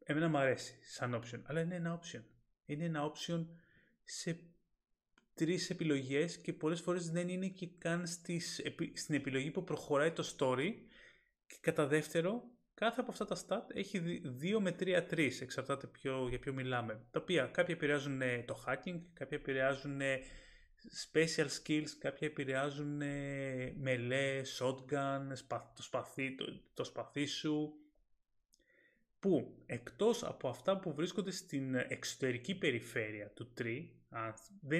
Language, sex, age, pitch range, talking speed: Greek, male, 30-49, 135-175 Hz, 140 wpm